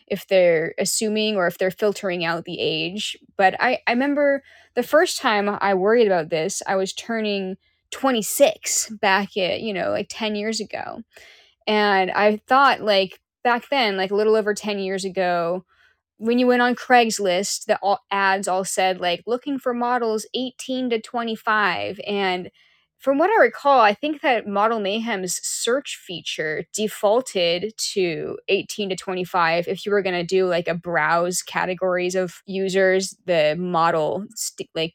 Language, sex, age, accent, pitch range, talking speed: English, female, 10-29, American, 180-225 Hz, 160 wpm